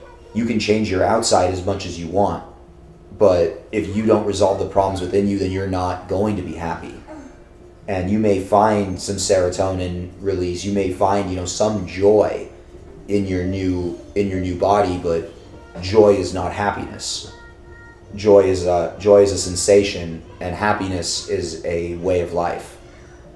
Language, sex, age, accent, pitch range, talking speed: English, male, 30-49, American, 90-100 Hz, 170 wpm